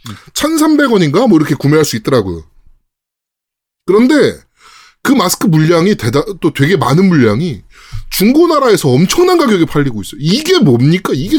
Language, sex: Korean, male